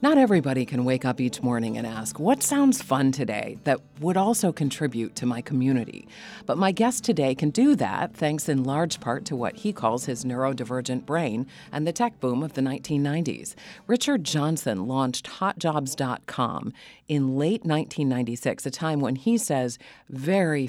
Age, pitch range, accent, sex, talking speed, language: 40-59, 125-170 Hz, American, female, 170 wpm, English